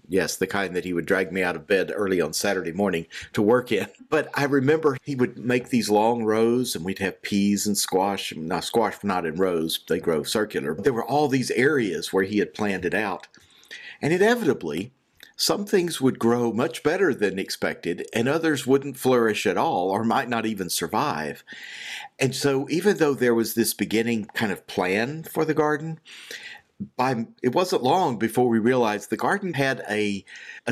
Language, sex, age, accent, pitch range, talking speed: English, male, 50-69, American, 105-140 Hz, 195 wpm